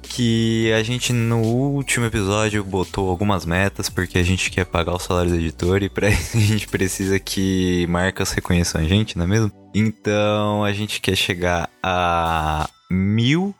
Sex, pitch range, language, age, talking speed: male, 85-105 Hz, Portuguese, 20-39, 170 wpm